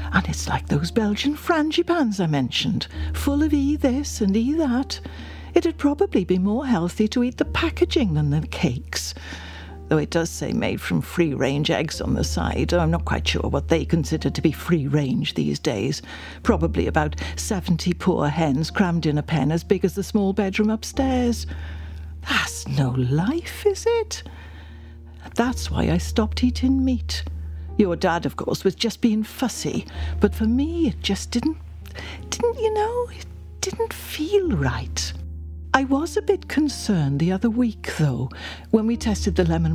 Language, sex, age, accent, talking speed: English, female, 60-79, British, 170 wpm